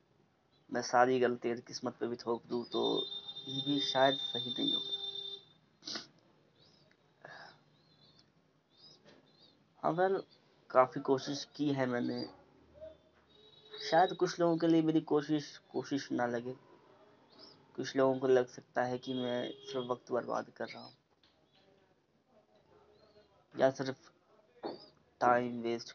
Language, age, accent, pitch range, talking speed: Hindi, 20-39, native, 120-145 Hz, 110 wpm